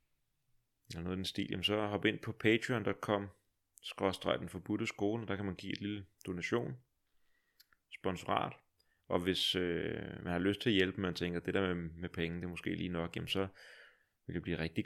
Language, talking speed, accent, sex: Danish, 200 wpm, native, male